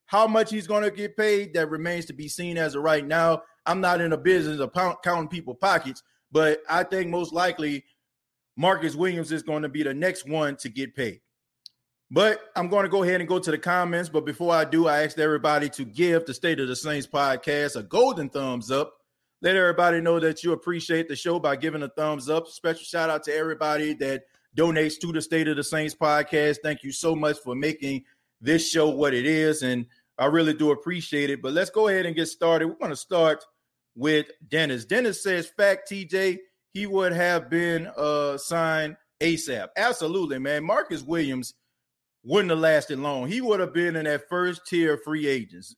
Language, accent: English, American